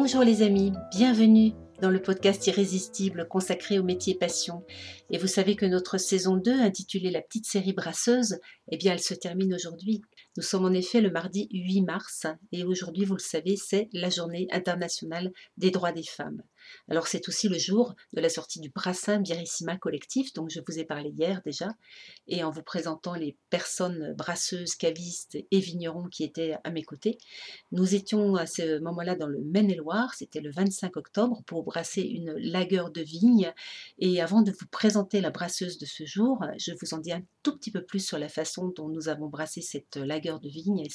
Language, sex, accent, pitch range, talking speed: French, female, French, 170-205 Hz, 195 wpm